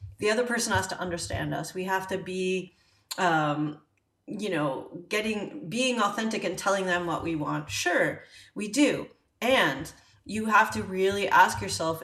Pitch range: 175-225 Hz